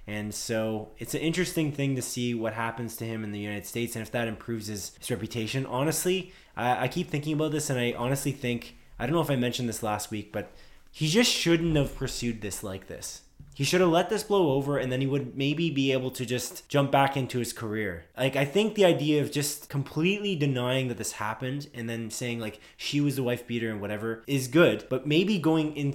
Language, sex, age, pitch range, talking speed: English, male, 20-39, 115-150 Hz, 235 wpm